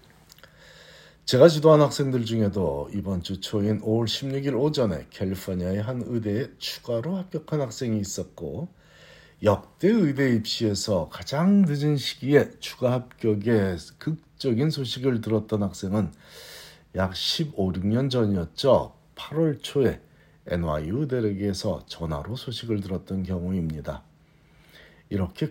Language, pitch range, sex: Korean, 95-130 Hz, male